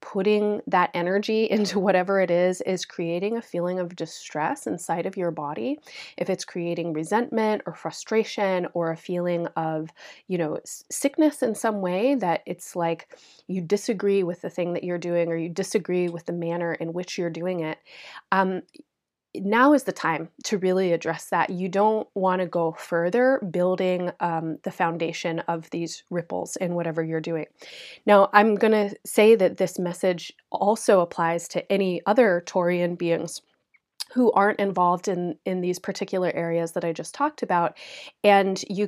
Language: English